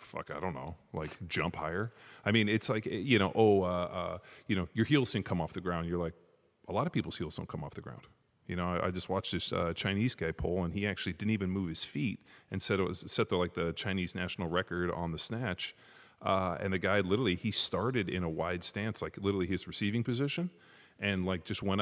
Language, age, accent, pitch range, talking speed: English, 30-49, American, 85-100 Hz, 250 wpm